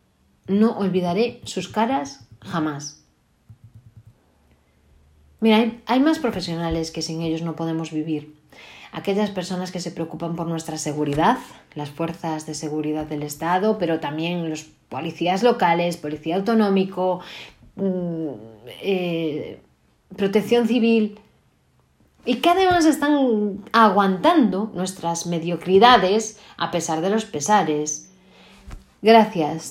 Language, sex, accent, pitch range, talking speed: Spanish, female, Spanish, 160-220 Hz, 105 wpm